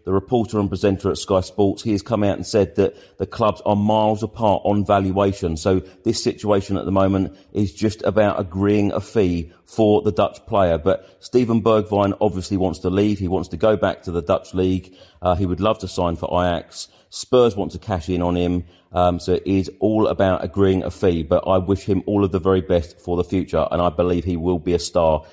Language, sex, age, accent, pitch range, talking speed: English, male, 40-59, British, 95-110 Hz, 230 wpm